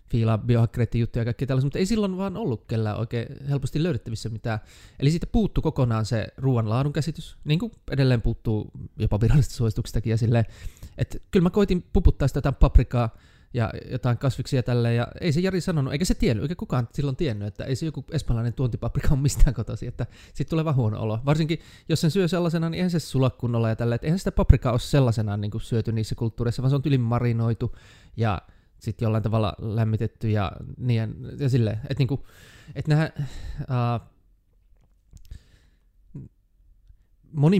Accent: native